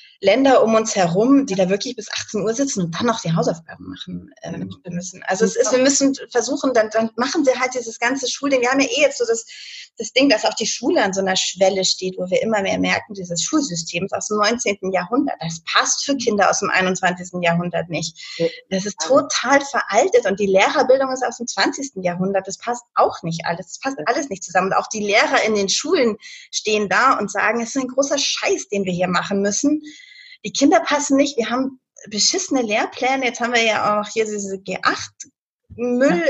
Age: 30-49